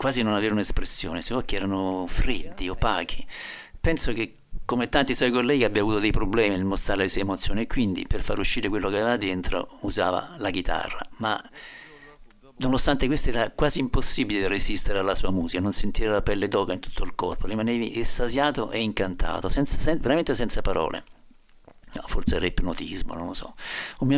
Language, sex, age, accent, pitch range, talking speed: Italian, male, 60-79, native, 95-130 Hz, 180 wpm